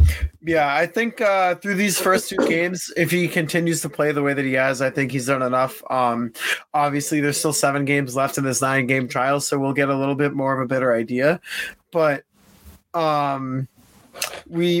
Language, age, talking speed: English, 20-39, 200 wpm